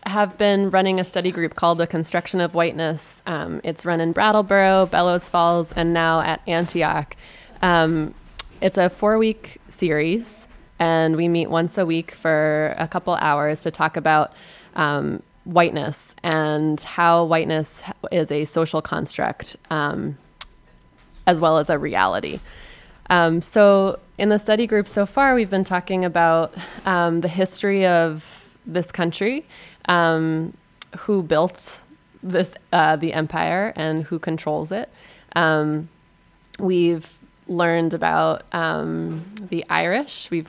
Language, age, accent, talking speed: English, 20-39, American, 140 wpm